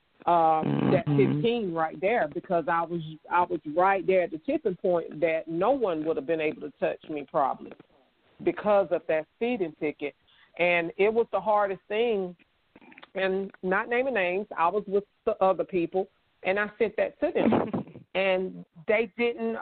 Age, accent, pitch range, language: 40-59, American, 160-195 Hz, English